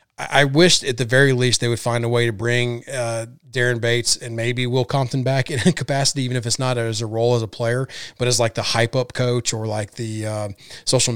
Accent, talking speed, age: American, 255 wpm, 30-49